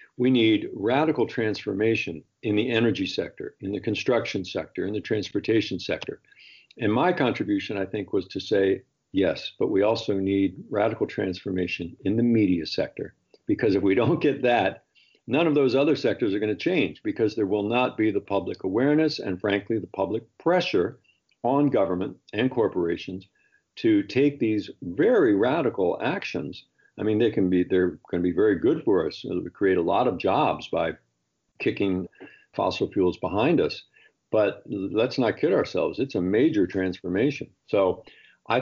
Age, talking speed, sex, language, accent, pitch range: 50-69, 165 wpm, male, English, American, 90-120 Hz